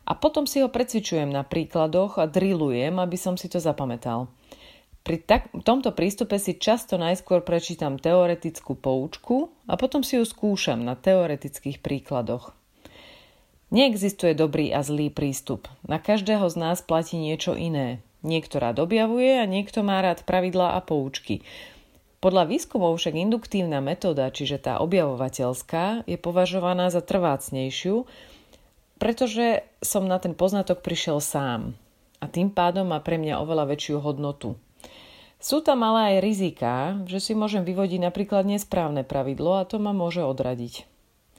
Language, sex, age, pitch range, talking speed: Slovak, female, 30-49, 145-200 Hz, 140 wpm